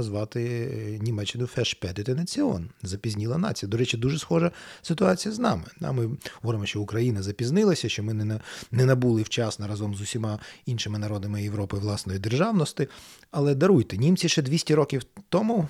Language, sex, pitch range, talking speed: Ukrainian, male, 110-155 Hz, 140 wpm